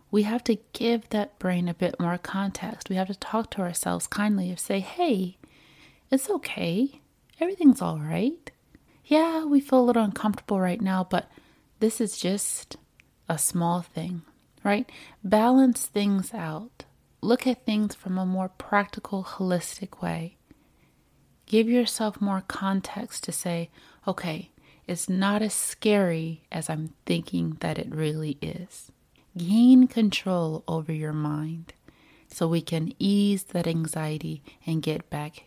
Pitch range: 165-210 Hz